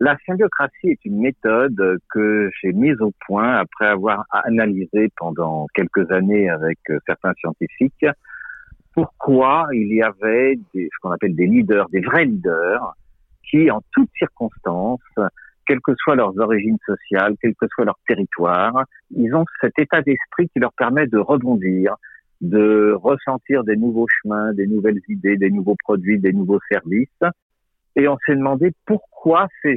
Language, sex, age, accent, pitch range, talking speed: French, male, 50-69, French, 105-145 Hz, 155 wpm